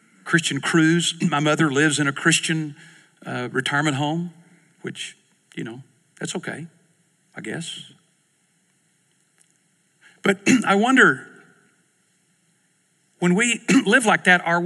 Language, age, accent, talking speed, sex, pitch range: English, 50-69, American, 110 wpm, male, 145-180 Hz